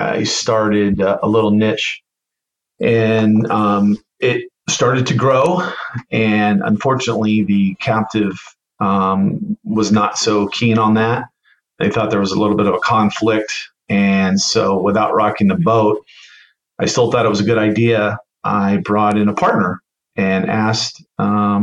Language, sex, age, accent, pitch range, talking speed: English, male, 40-59, American, 105-115 Hz, 150 wpm